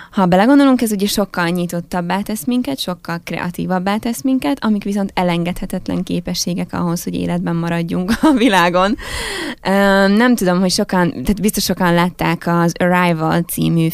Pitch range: 170-215 Hz